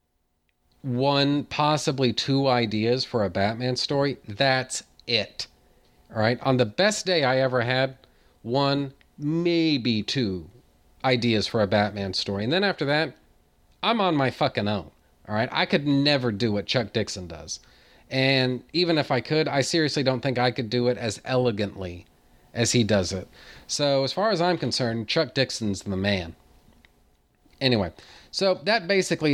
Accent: American